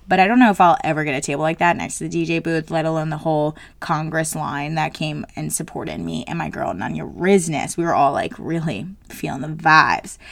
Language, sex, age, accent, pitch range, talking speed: English, female, 20-39, American, 160-185 Hz, 240 wpm